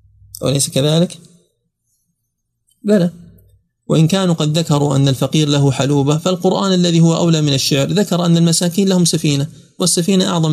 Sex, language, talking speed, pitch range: male, Arabic, 135 wpm, 120-165 Hz